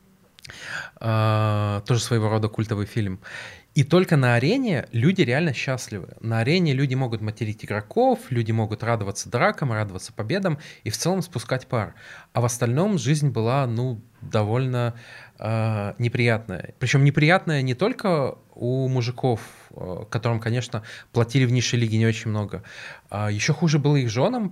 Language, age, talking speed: Russian, 20-39, 140 wpm